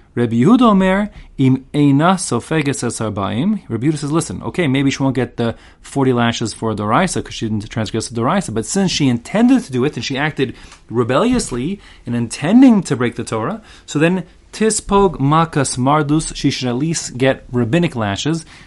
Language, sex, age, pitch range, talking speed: English, male, 30-49, 105-140 Hz, 160 wpm